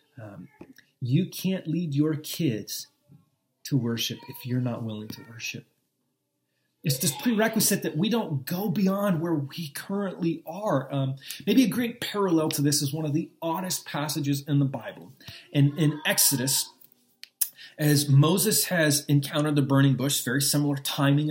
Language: English